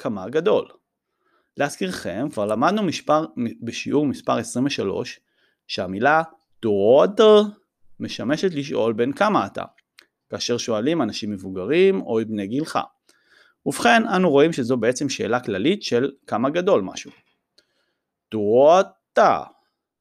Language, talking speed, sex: Hebrew, 100 wpm, male